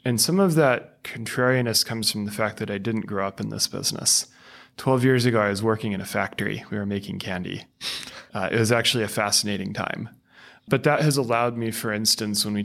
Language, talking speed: English, 220 wpm